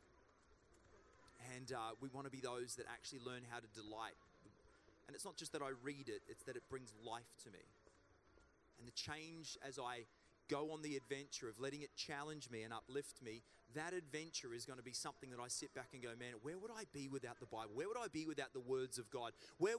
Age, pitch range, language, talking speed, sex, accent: 30-49, 125-160 Hz, English, 230 wpm, male, Australian